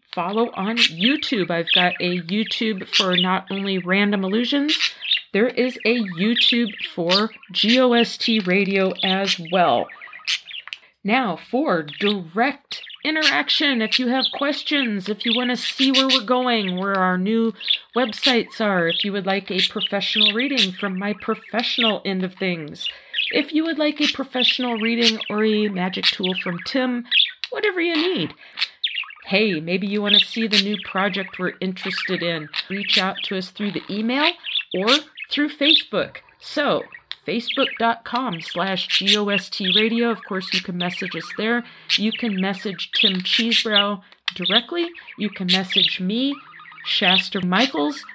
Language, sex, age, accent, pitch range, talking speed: English, female, 40-59, American, 190-250 Hz, 145 wpm